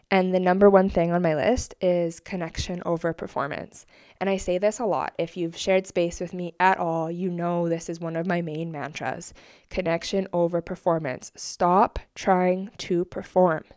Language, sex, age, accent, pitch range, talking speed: English, female, 20-39, American, 175-195 Hz, 185 wpm